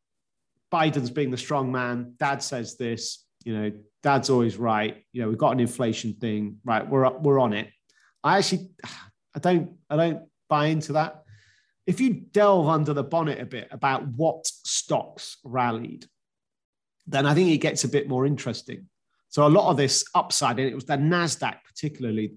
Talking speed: 180 wpm